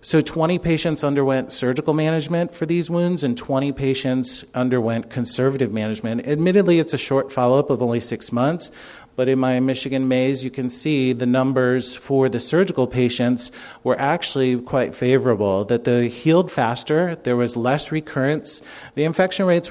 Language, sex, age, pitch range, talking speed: English, male, 40-59, 120-145 Hz, 160 wpm